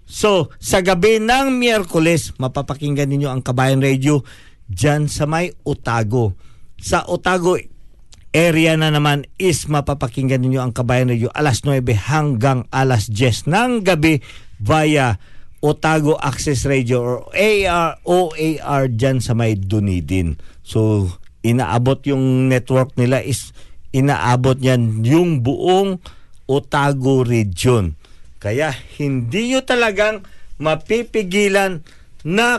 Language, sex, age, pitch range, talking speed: Filipino, male, 50-69, 125-185 Hz, 110 wpm